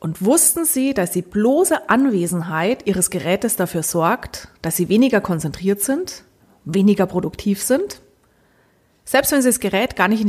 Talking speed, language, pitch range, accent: 155 wpm, German, 180-245 Hz, German